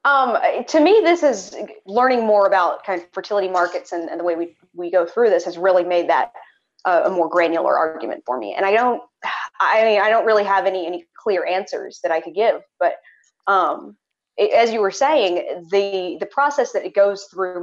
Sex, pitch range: female, 175-230 Hz